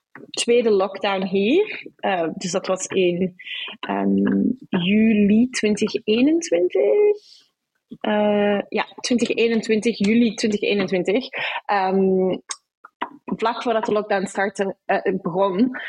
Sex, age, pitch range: female, 20-39, 195-235 Hz